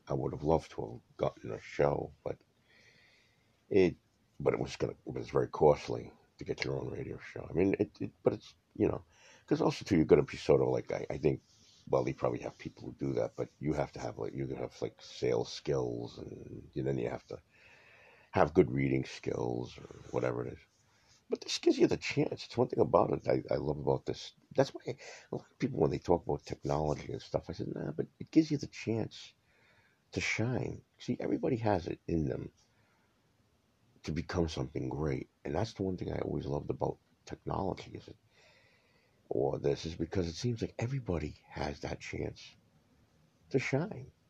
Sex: male